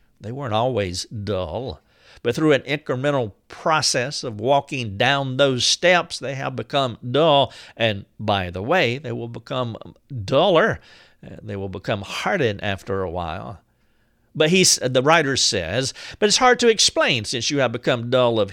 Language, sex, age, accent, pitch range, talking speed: English, male, 50-69, American, 105-140 Hz, 155 wpm